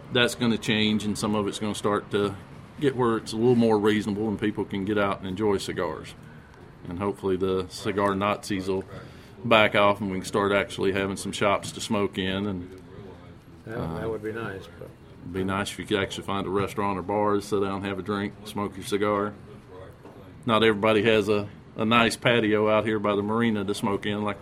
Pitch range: 100-120 Hz